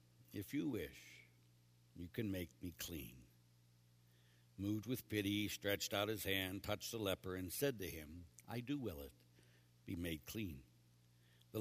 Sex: male